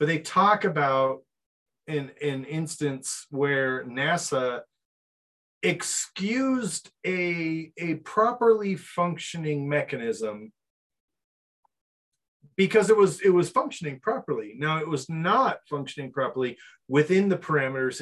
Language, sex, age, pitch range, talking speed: English, male, 30-49, 145-205 Hz, 100 wpm